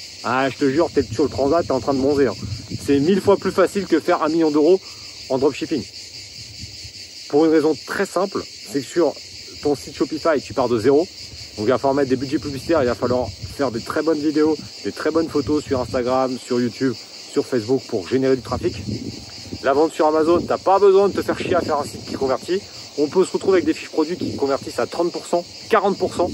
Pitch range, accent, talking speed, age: 120-170 Hz, French, 230 wpm, 40-59